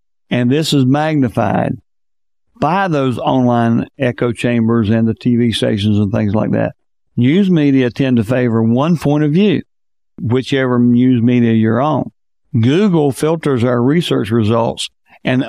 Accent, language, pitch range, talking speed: American, English, 120-155 Hz, 145 wpm